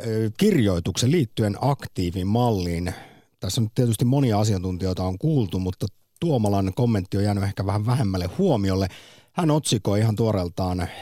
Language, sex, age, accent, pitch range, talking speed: Finnish, male, 50-69, native, 95-130 Hz, 125 wpm